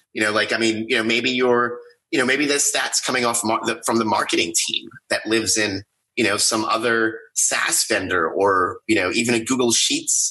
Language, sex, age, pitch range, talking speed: English, male, 30-49, 115-175 Hz, 220 wpm